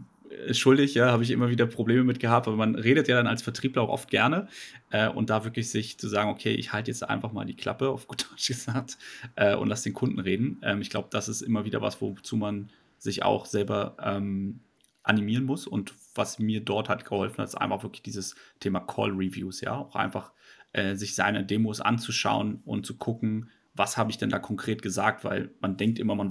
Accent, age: German, 30-49